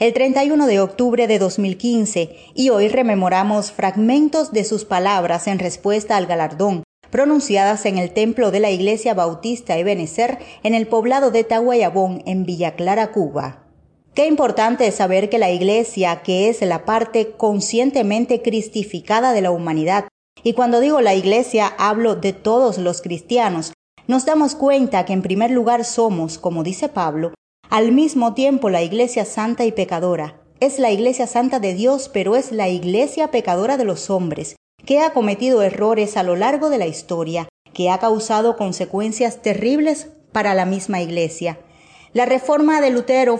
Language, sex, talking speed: English, female, 160 wpm